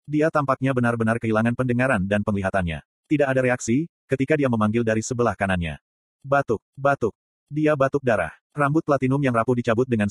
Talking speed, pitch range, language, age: 160 wpm, 110-140 Hz, Indonesian, 30-49